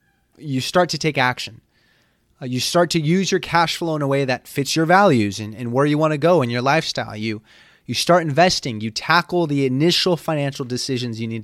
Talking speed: 220 wpm